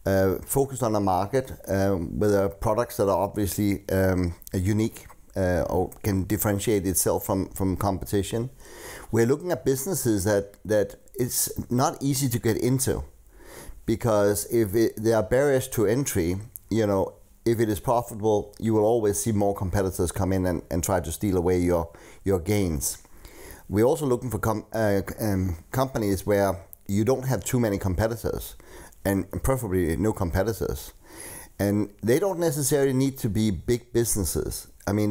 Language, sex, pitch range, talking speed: English, male, 95-120 Hz, 160 wpm